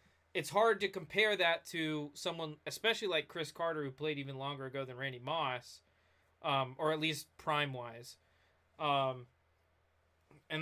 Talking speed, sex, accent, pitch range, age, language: 145 wpm, male, American, 140-175 Hz, 20-39, English